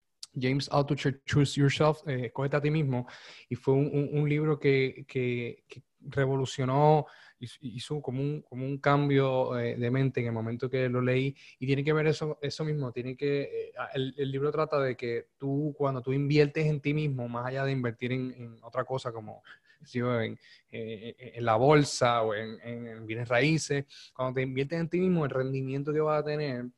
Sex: male